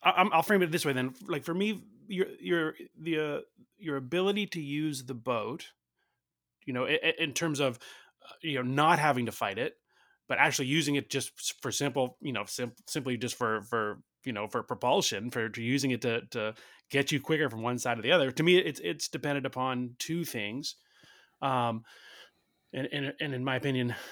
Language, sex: English, male